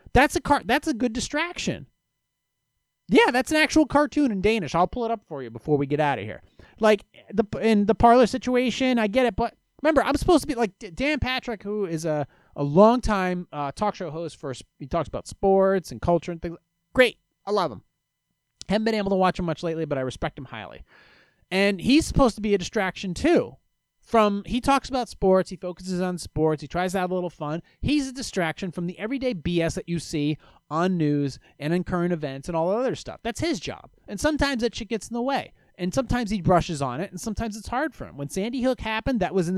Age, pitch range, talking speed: 30-49, 165-240 Hz, 230 wpm